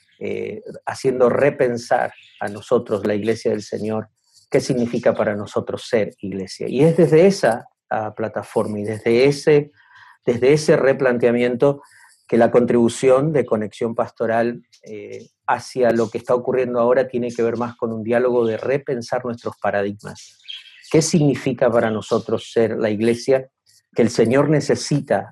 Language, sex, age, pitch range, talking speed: Spanish, male, 50-69, 110-130 Hz, 145 wpm